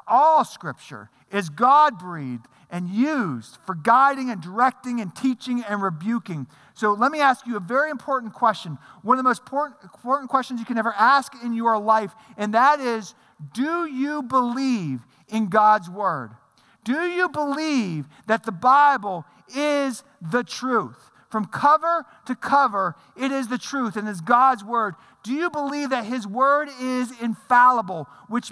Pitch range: 160-260 Hz